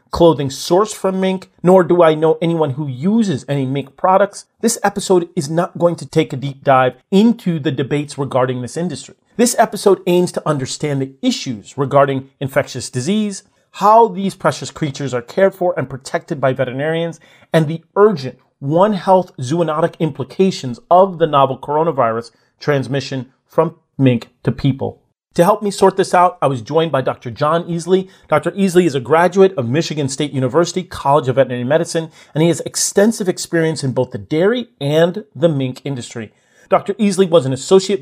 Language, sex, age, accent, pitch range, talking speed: English, male, 40-59, American, 135-185 Hz, 175 wpm